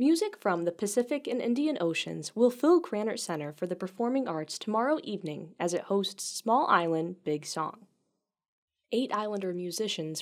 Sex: female